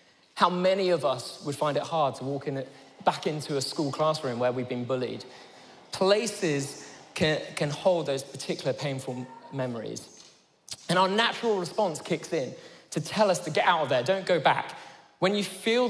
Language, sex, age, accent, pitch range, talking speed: English, male, 20-39, British, 135-185 Hz, 175 wpm